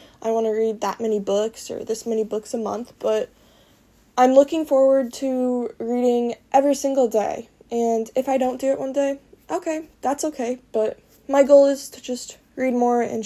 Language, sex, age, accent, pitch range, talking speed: English, female, 10-29, American, 225-270 Hz, 190 wpm